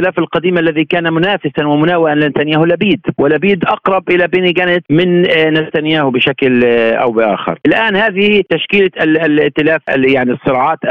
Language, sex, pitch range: Arabic, male, 145-185 Hz